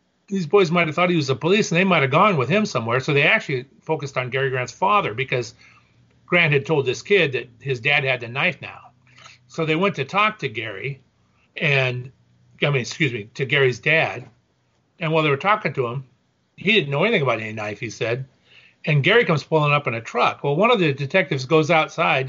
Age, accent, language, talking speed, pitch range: 40-59, American, English, 225 wpm, 130-180 Hz